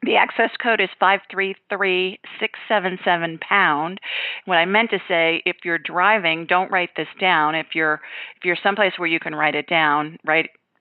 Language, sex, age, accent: English, female, 40-59, American